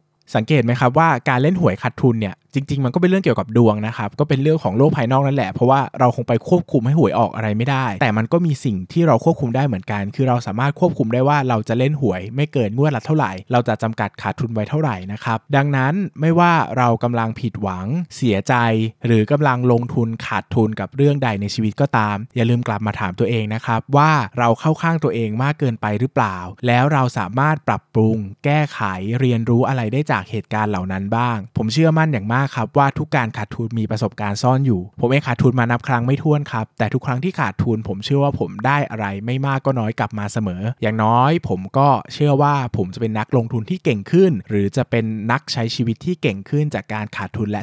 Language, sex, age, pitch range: Thai, male, 20-39, 110-145 Hz